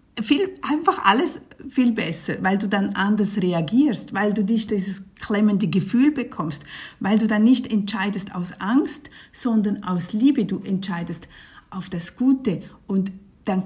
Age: 50-69